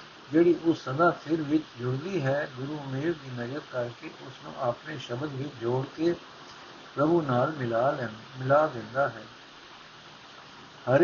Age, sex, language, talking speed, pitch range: 60-79, male, Punjabi, 130 wpm, 130-170 Hz